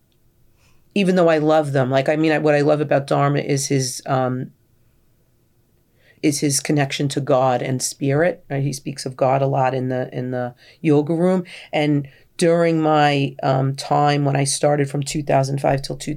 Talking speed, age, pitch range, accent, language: 190 wpm, 40-59, 130-150 Hz, American, English